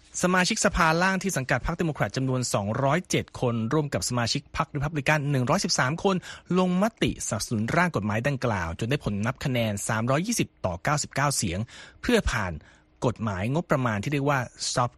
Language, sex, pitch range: Thai, male, 120-160 Hz